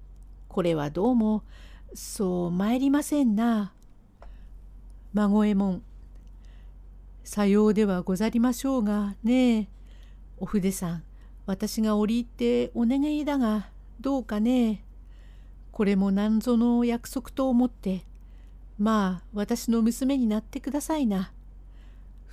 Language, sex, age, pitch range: Japanese, female, 60-79, 175-245 Hz